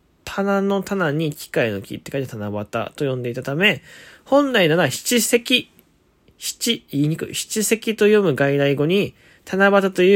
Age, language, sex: 20-39, Japanese, male